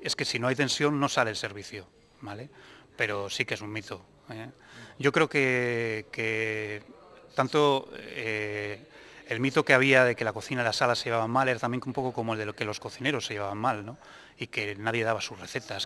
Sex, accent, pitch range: male, Spanish, 105-130 Hz